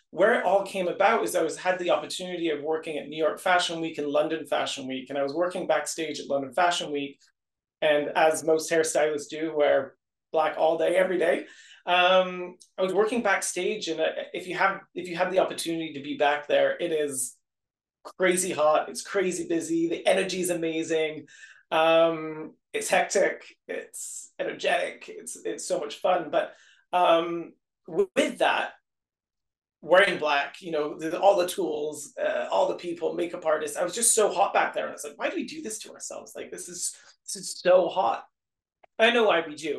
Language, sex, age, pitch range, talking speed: English, male, 30-49, 150-195 Hz, 195 wpm